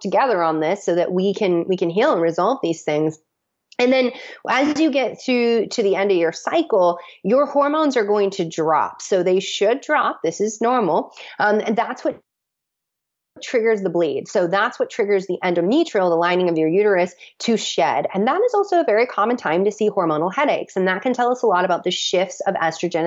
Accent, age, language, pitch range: American, 30-49, English, 170-225 Hz